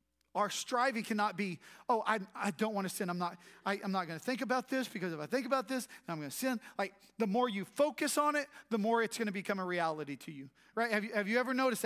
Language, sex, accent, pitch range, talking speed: English, male, American, 160-230 Hz, 285 wpm